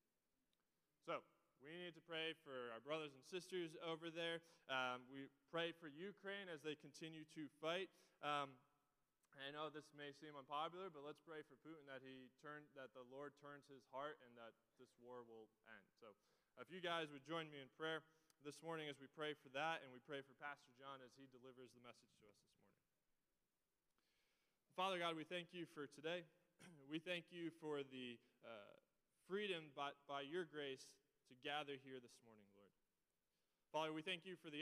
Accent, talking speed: American, 190 wpm